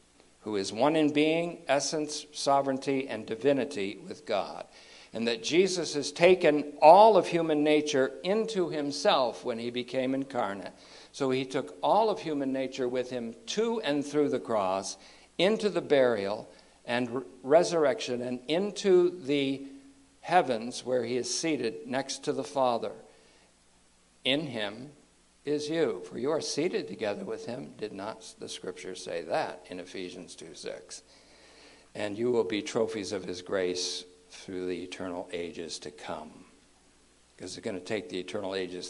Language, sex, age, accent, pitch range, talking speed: English, male, 60-79, American, 95-150 Hz, 155 wpm